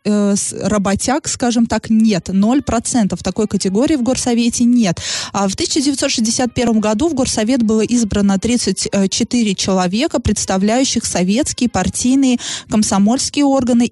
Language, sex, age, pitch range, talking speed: Russian, female, 20-39, 205-250 Hz, 110 wpm